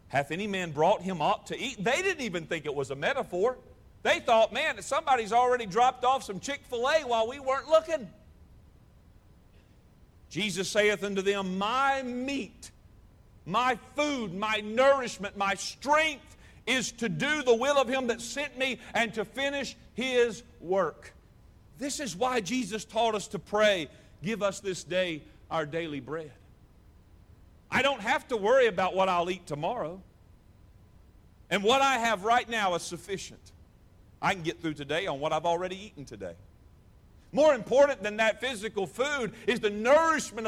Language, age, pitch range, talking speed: English, 50-69, 175-265 Hz, 160 wpm